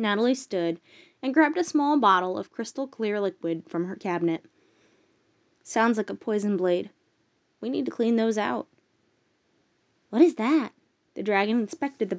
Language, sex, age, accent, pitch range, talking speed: English, female, 20-39, American, 185-285 Hz, 155 wpm